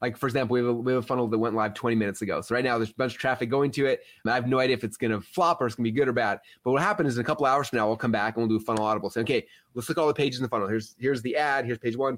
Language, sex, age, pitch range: English, male, 30-49, 115-155 Hz